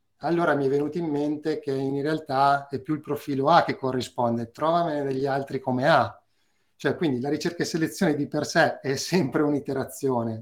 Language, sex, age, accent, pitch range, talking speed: Italian, male, 30-49, native, 115-145 Hz, 190 wpm